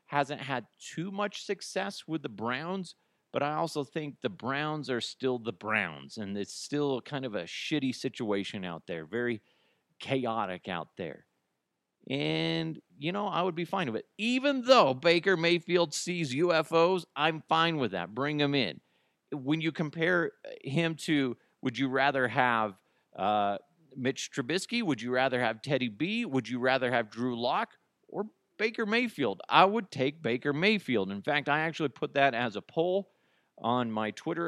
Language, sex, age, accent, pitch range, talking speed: English, male, 40-59, American, 120-170 Hz, 170 wpm